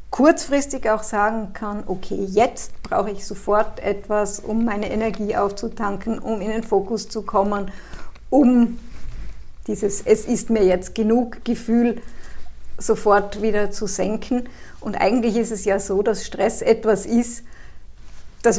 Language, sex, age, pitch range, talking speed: German, female, 50-69, 205-235 Hz, 140 wpm